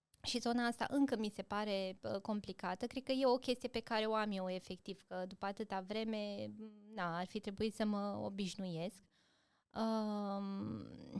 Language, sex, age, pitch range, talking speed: Romanian, female, 20-39, 195-255 Hz, 165 wpm